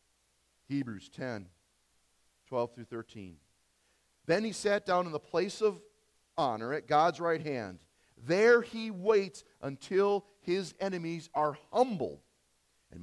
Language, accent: English, American